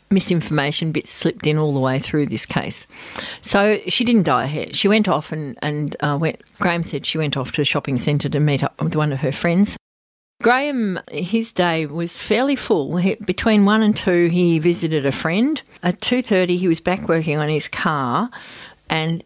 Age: 50-69